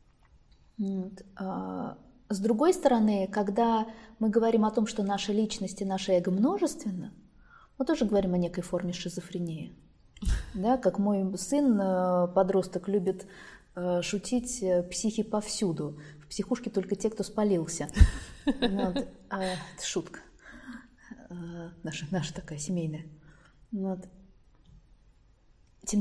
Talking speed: 115 wpm